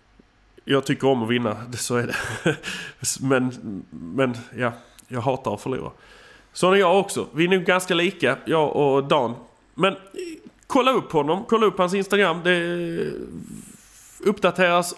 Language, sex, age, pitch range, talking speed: English, male, 30-49, 135-185 Hz, 155 wpm